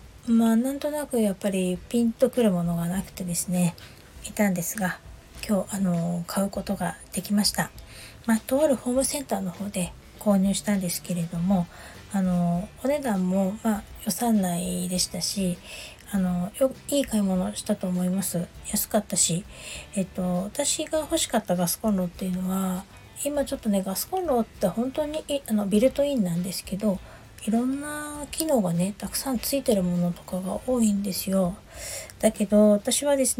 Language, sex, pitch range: Japanese, female, 180-250 Hz